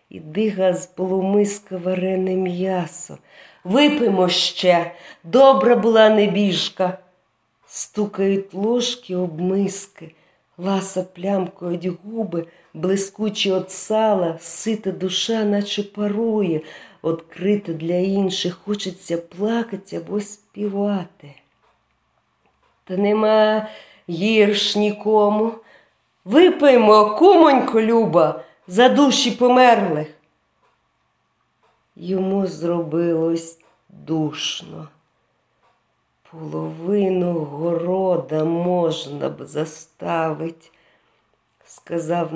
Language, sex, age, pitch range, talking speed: Ukrainian, female, 40-59, 165-205 Hz, 70 wpm